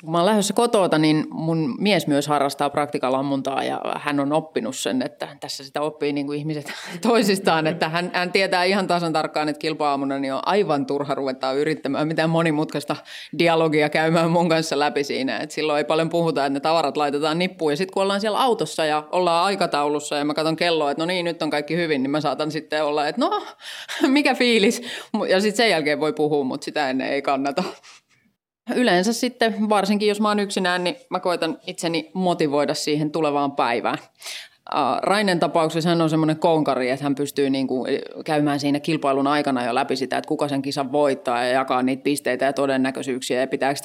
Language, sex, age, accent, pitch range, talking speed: Finnish, female, 30-49, native, 145-180 Hz, 190 wpm